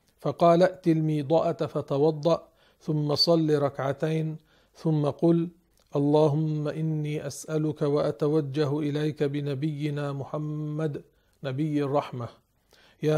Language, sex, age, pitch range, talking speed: Arabic, male, 50-69, 140-160 Hz, 85 wpm